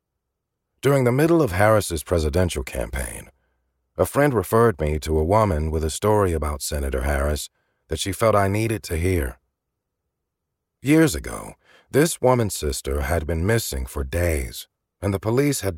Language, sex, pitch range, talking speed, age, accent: English, male, 75-115 Hz, 155 wpm, 40-59, American